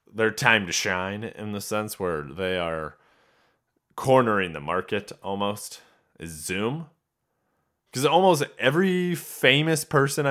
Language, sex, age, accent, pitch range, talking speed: English, male, 20-39, American, 95-130 Hz, 120 wpm